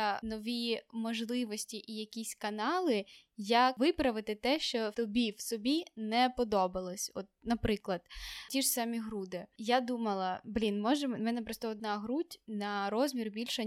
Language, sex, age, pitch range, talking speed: Ukrainian, female, 10-29, 210-265 Hz, 140 wpm